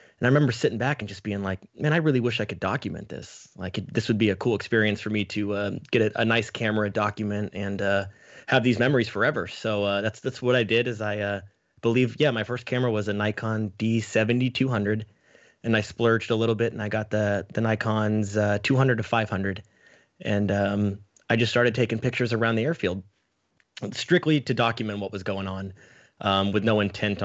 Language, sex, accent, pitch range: English, male, American, 100-120 Hz